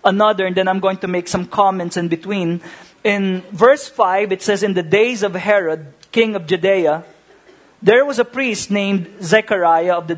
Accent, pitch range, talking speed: Filipino, 185-215 Hz, 190 wpm